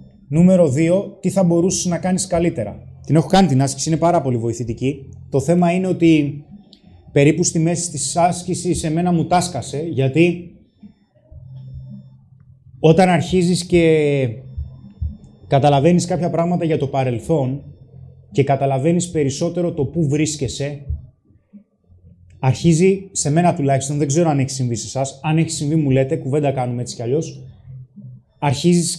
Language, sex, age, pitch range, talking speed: Greek, male, 20-39, 130-170 Hz, 140 wpm